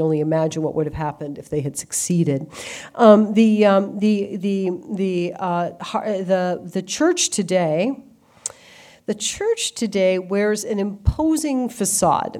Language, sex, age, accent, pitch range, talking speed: English, female, 50-69, American, 160-190 Hz, 135 wpm